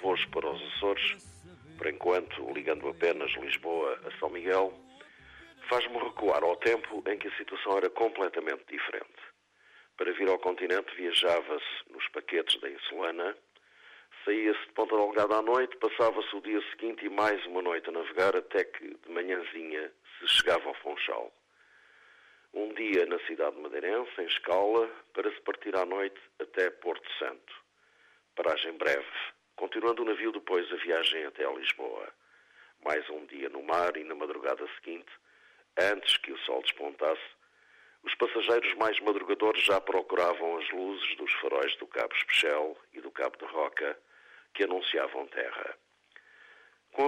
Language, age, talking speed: Portuguese, 50-69, 150 wpm